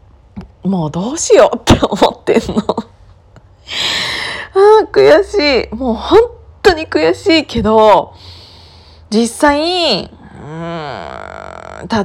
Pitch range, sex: 180-280 Hz, female